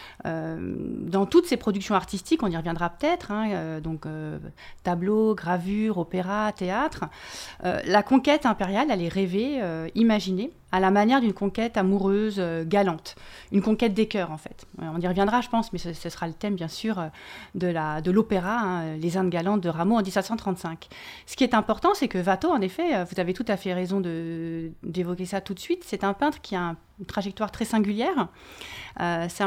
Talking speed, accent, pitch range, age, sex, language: 200 wpm, French, 175-225 Hz, 30-49, female, French